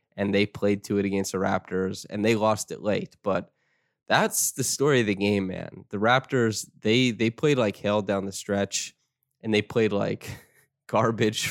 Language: English